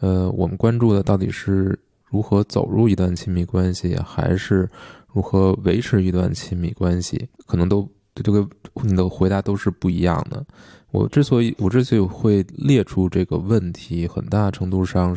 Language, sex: Chinese, male